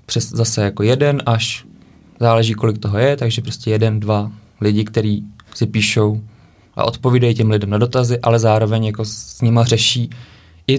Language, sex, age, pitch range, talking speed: Czech, male, 20-39, 105-120 Hz, 170 wpm